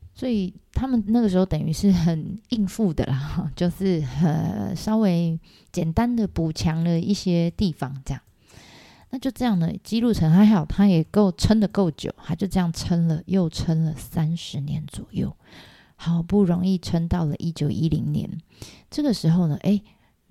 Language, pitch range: Chinese, 160-195 Hz